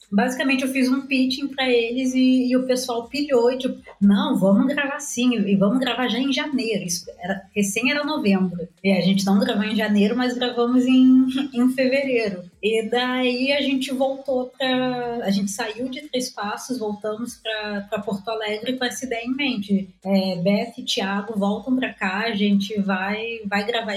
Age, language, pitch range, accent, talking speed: 20-39, Portuguese, 205-255 Hz, Brazilian, 185 wpm